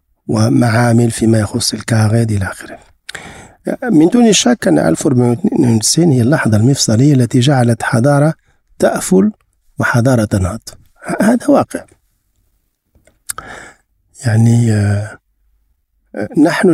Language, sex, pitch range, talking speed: Arabic, male, 110-160 Hz, 85 wpm